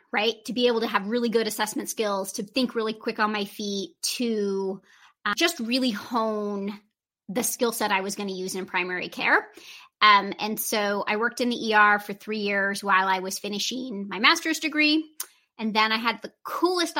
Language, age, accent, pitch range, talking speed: English, 30-49, American, 205-255 Hz, 200 wpm